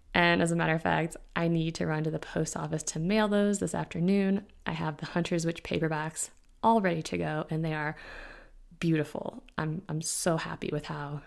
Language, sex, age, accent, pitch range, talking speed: English, female, 20-39, American, 160-195 Hz, 210 wpm